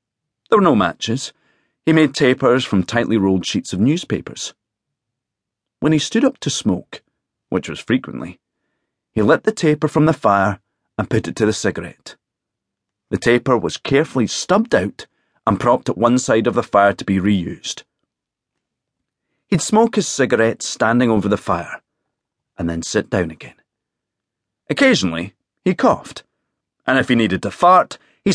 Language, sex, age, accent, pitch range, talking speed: English, male, 40-59, British, 100-140 Hz, 160 wpm